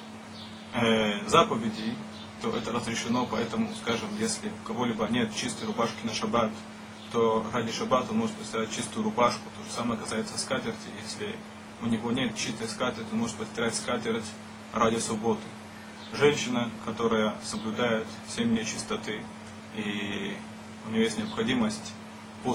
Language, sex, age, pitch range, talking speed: Russian, male, 20-39, 110-120 Hz, 140 wpm